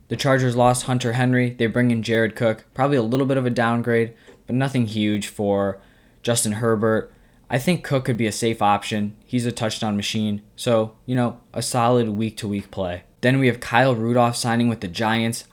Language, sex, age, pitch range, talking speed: English, male, 20-39, 105-120 Hz, 195 wpm